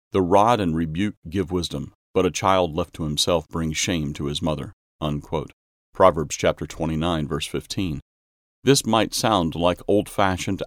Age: 40-59